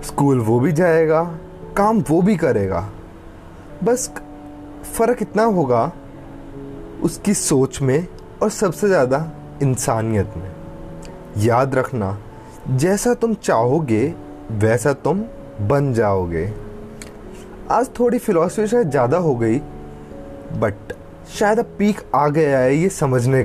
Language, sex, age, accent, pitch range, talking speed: Hindi, male, 20-39, native, 105-160 Hz, 115 wpm